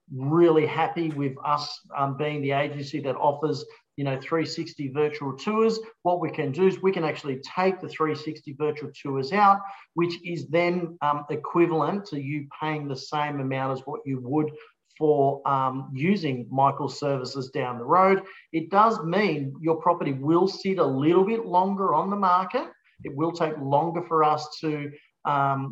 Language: English